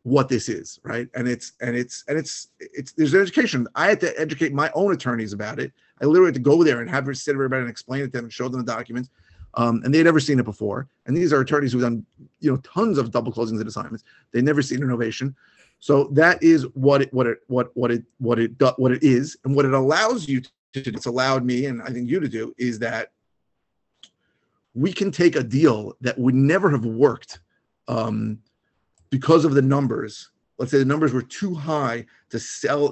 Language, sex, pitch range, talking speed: English, male, 115-145 Hz, 230 wpm